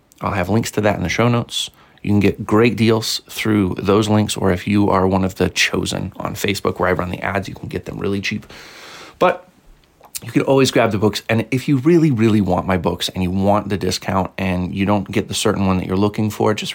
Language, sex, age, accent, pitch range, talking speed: English, male, 30-49, American, 95-120 Hz, 250 wpm